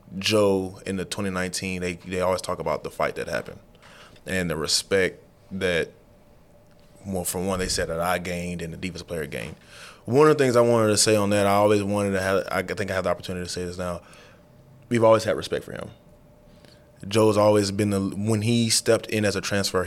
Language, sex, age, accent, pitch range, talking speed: English, male, 20-39, American, 95-105 Hz, 215 wpm